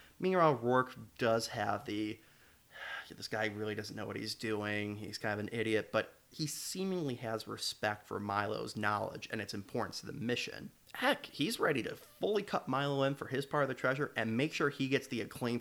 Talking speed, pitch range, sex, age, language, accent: 205 wpm, 105-125 Hz, male, 30-49, English, American